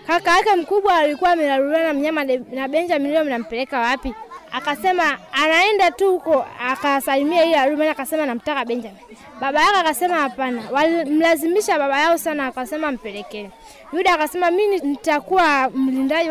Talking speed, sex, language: 140 wpm, female, Swahili